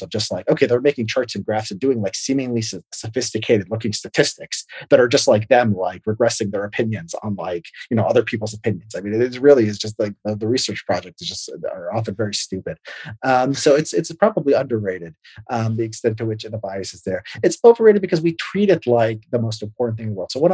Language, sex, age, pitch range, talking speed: English, male, 30-49, 105-130 Hz, 230 wpm